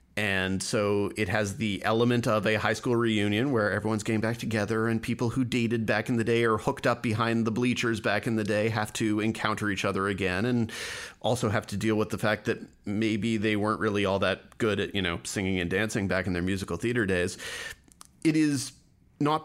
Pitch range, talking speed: 100-120 Hz, 220 wpm